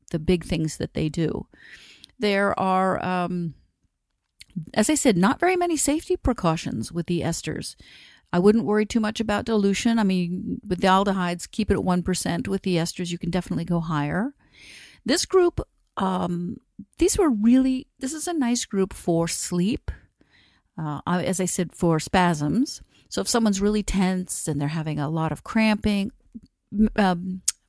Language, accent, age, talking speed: English, American, 50-69, 165 wpm